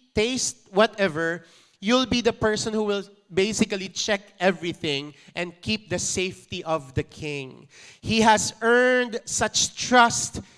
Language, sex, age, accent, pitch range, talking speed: English, male, 30-49, Filipino, 155-220 Hz, 130 wpm